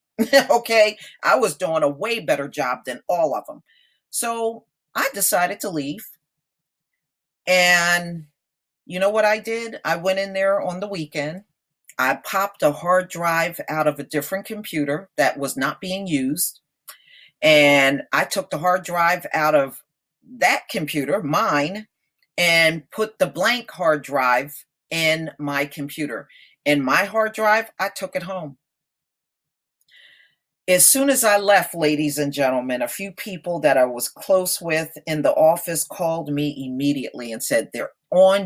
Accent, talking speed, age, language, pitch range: American, 155 wpm, 40-59, English, 145-195 Hz